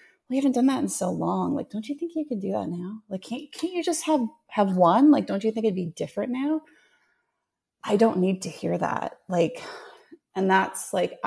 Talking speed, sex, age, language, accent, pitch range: 225 wpm, female, 30-49, English, American, 175-225 Hz